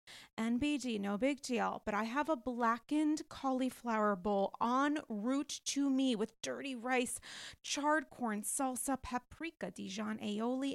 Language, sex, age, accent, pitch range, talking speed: English, female, 30-49, American, 225-280 Hz, 135 wpm